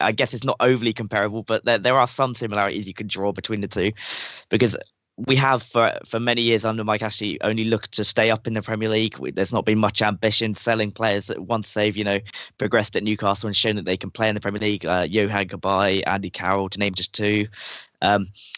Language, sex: English, male